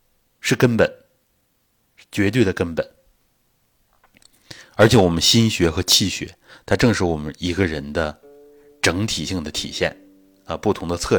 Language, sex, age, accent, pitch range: Chinese, male, 30-49, native, 90-125 Hz